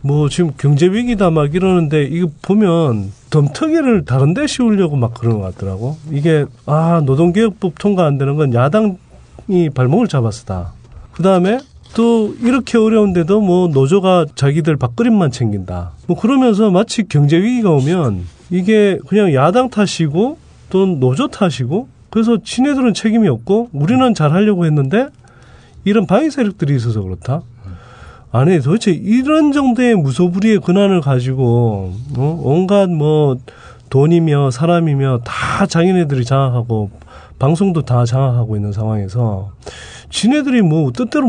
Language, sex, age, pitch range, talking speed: English, male, 30-49, 125-210 Hz, 125 wpm